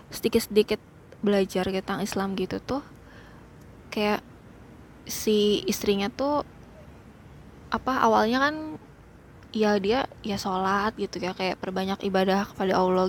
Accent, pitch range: native, 200-240 Hz